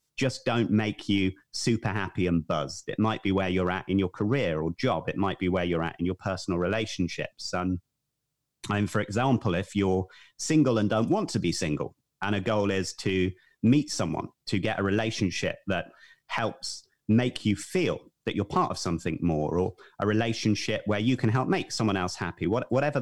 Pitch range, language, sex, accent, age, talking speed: 95-120 Hz, English, male, British, 30-49, 200 wpm